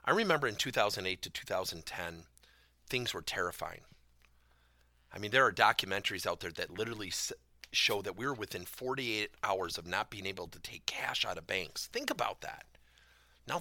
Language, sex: English, male